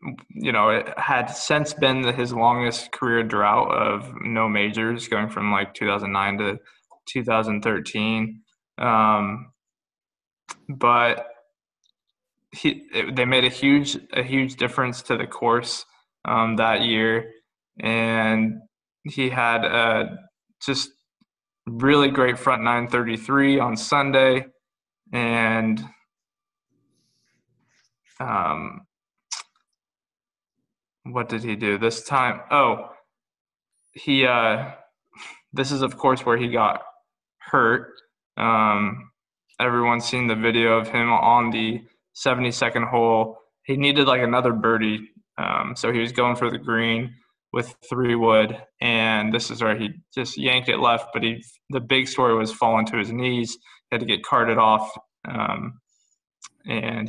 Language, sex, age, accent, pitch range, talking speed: English, male, 20-39, American, 110-130 Hz, 130 wpm